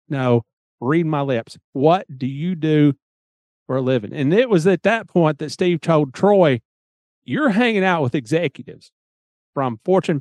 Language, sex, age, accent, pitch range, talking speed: English, male, 40-59, American, 135-175 Hz, 165 wpm